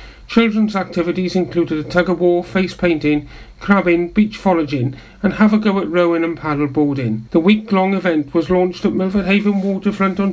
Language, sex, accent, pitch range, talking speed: English, male, British, 145-190 Hz, 150 wpm